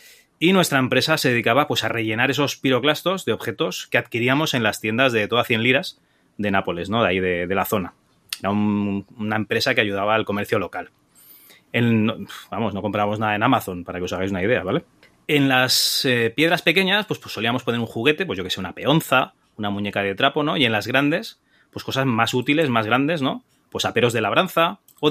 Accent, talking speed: Spanish, 215 wpm